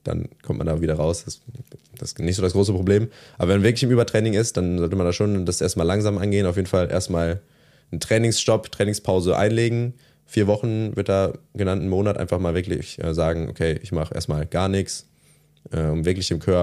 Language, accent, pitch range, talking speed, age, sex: German, German, 85-100 Hz, 200 wpm, 20-39, male